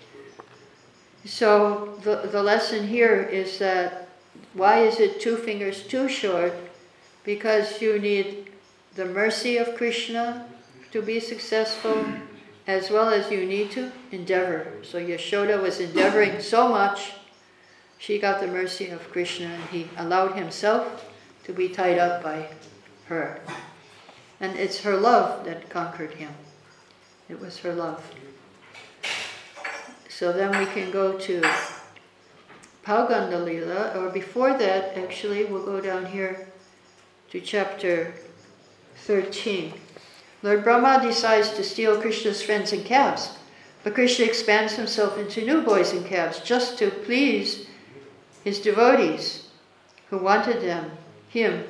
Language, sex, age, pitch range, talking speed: English, female, 60-79, 180-225 Hz, 130 wpm